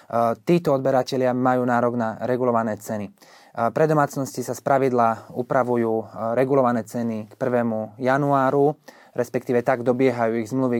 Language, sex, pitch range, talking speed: Slovak, male, 115-130 Hz, 130 wpm